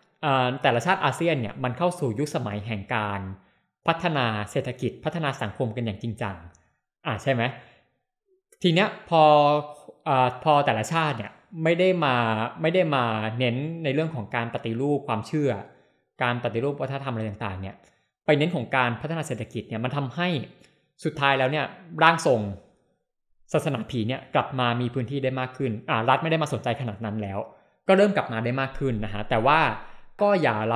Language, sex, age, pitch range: Thai, male, 20-39, 115-150 Hz